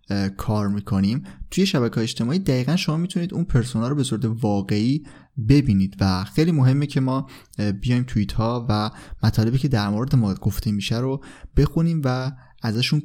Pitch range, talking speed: 115-140 Hz, 160 wpm